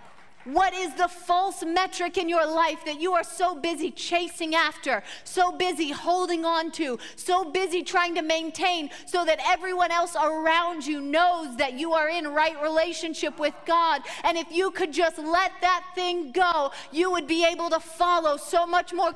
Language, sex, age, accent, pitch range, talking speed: English, female, 30-49, American, 295-365 Hz, 180 wpm